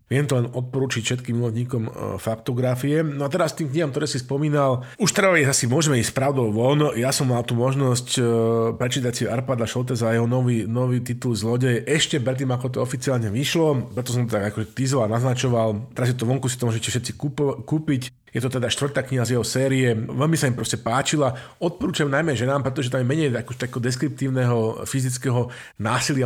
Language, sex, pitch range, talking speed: Slovak, male, 115-135 Hz, 195 wpm